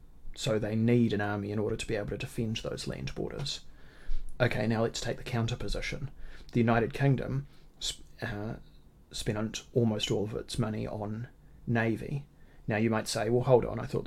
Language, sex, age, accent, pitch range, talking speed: English, male, 30-49, Australian, 110-130 Hz, 185 wpm